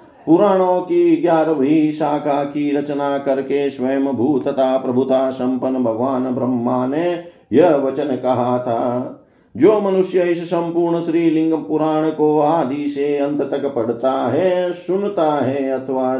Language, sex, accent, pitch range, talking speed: Hindi, male, native, 130-170 Hz, 95 wpm